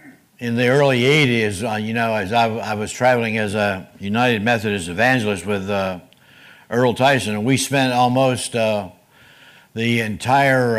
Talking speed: 145 wpm